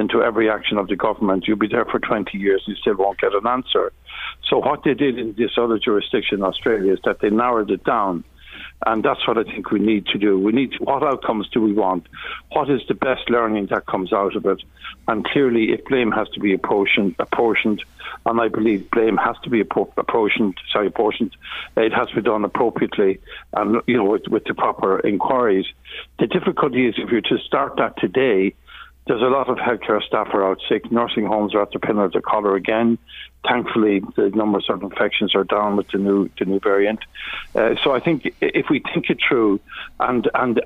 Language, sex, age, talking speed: English, male, 60-79, 215 wpm